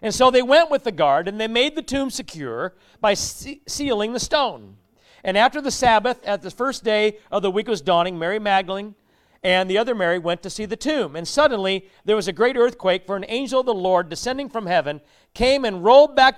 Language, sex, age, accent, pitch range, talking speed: English, male, 50-69, American, 180-245 Hz, 225 wpm